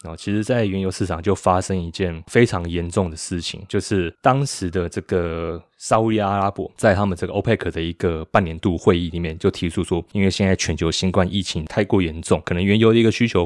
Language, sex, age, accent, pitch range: Chinese, male, 20-39, native, 90-105 Hz